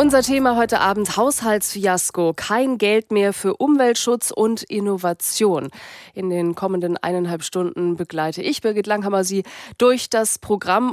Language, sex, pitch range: German, female, 190-235 Hz